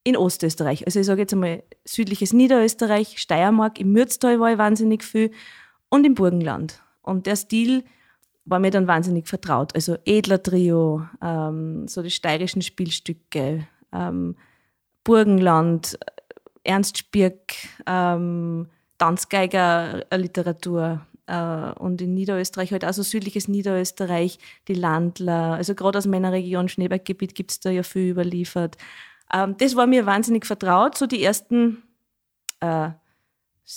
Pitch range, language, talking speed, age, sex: 175-220 Hz, German, 130 wpm, 20-39, female